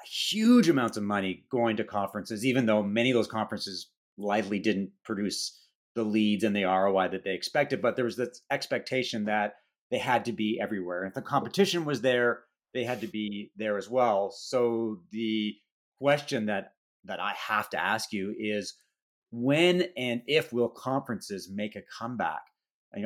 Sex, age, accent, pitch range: male, 40-59, American, 105-135 Hz